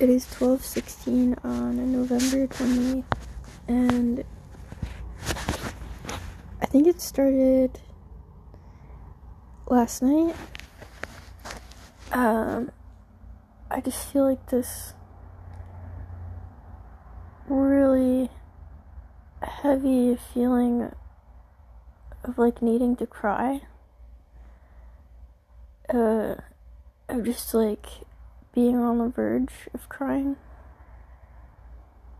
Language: English